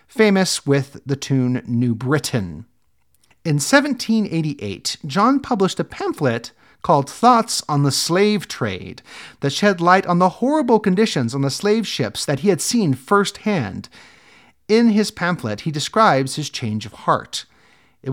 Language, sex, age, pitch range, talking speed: English, male, 40-59, 120-190 Hz, 145 wpm